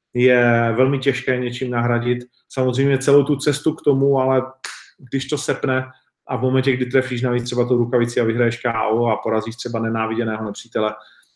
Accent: native